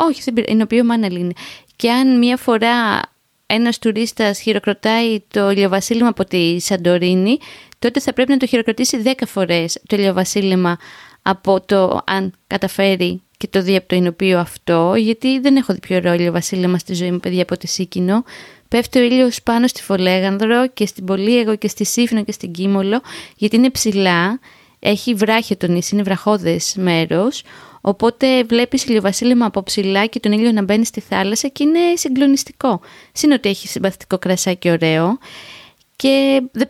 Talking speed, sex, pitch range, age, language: 160 wpm, female, 185-235 Hz, 20-39, Greek